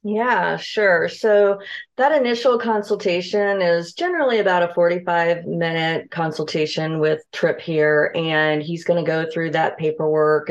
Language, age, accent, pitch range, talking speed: English, 40-59, American, 150-195 Hz, 135 wpm